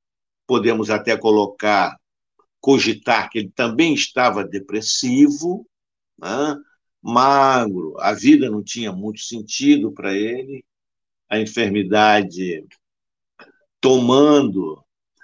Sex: male